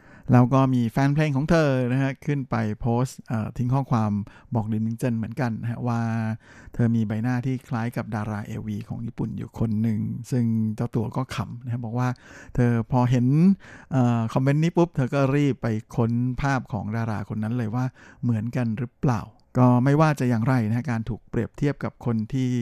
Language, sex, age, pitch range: Thai, male, 60-79, 115-135 Hz